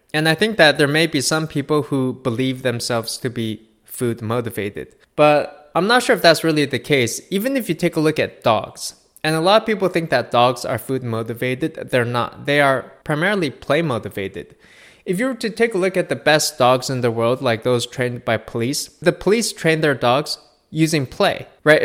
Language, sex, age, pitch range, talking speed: English, male, 20-39, 125-160 Hz, 215 wpm